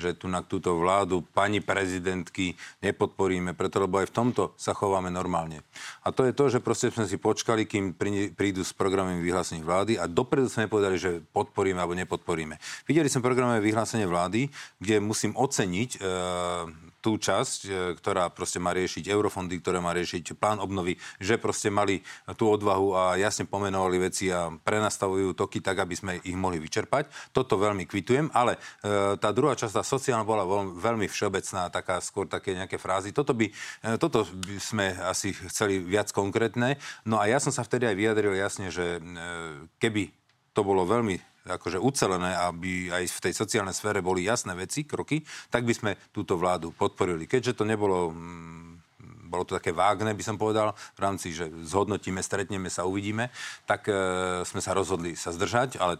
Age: 40-59